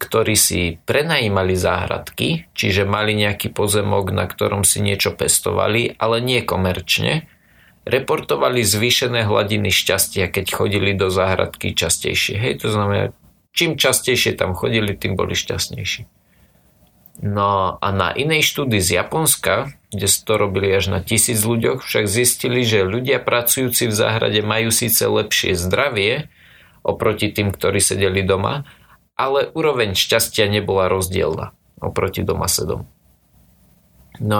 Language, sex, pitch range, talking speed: Slovak, male, 95-120 Hz, 125 wpm